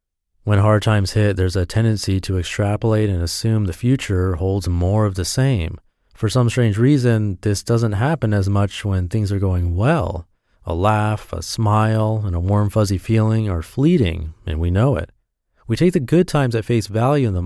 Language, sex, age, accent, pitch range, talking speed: English, male, 30-49, American, 95-130 Hz, 195 wpm